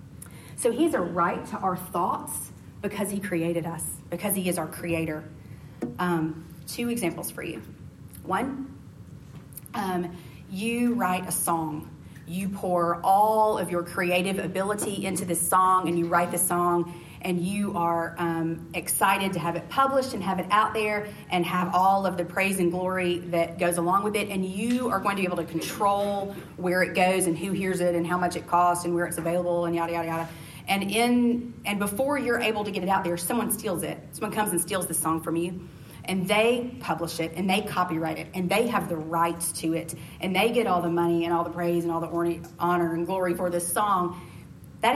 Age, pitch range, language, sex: 30-49, 170-205 Hz, English, female